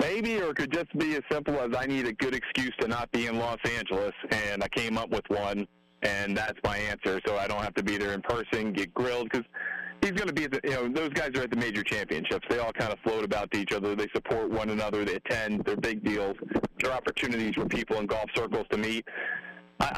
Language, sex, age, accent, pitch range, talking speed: English, male, 40-59, American, 105-130 Hz, 255 wpm